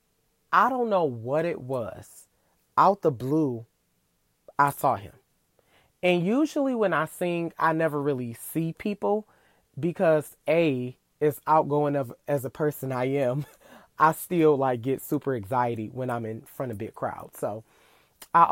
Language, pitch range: English, 130-170 Hz